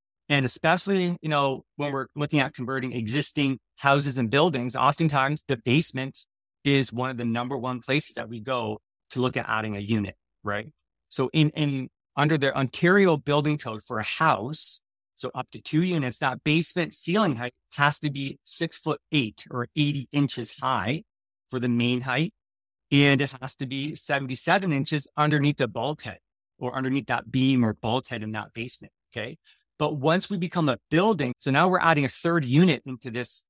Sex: male